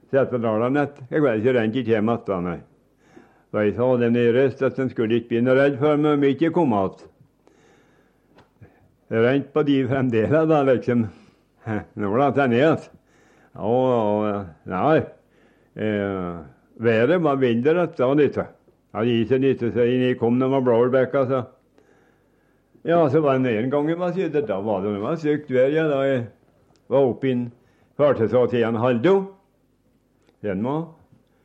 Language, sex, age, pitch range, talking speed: English, male, 60-79, 120-145 Hz, 155 wpm